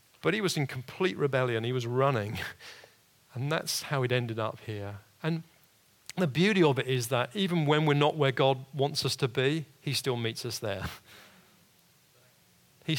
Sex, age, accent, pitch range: male, 40-59, British, 125-160 Hz